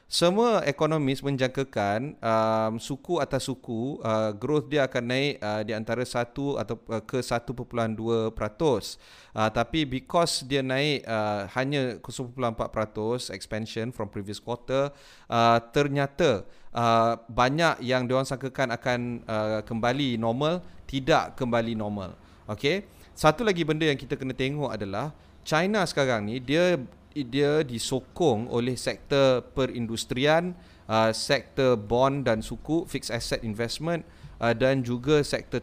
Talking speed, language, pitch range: 130 wpm, Malay, 115-150 Hz